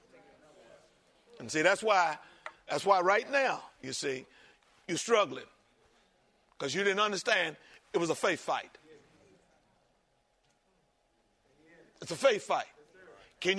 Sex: male